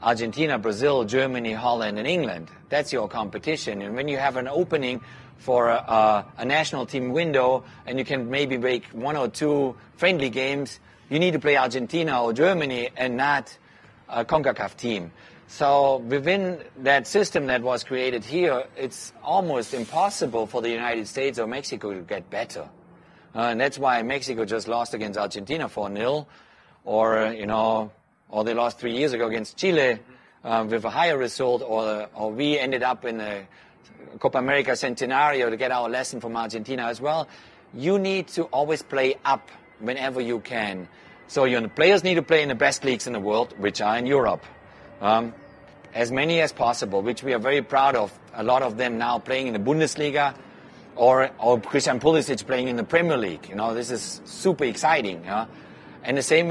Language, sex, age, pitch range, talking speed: English, male, 30-49, 115-140 Hz, 185 wpm